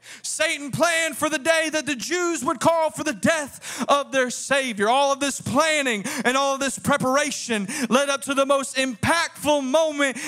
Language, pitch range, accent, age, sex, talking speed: English, 200-295 Hz, American, 30-49, male, 185 wpm